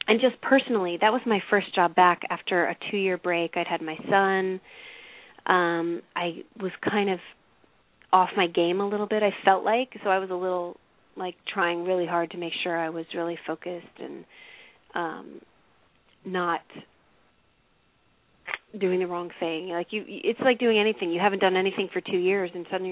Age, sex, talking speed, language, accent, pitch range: 30-49, female, 180 wpm, English, American, 175-215 Hz